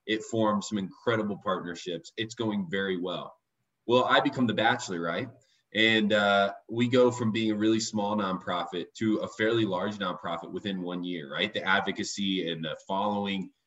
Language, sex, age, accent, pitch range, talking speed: English, male, 20-39, American, 95-115 Hz, 170 wpm